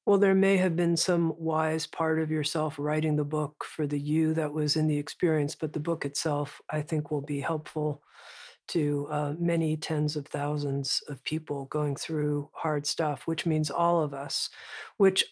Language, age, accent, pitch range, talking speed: English, 50-69, American, 150-175 Hz, 190 wpm